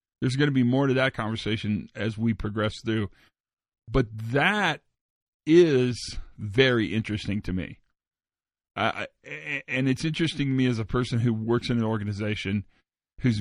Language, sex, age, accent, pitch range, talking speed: English, male, 40-59, American, 105-130 Hz, 150 wpm